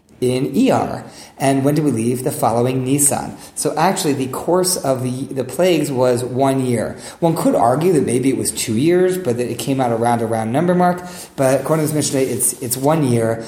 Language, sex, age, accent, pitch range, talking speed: English, male, 30-49, American, 120-150 Hz, 220 wpm